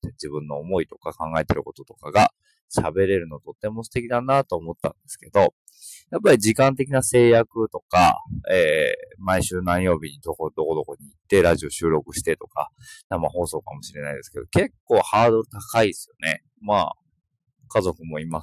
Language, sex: Japanese, male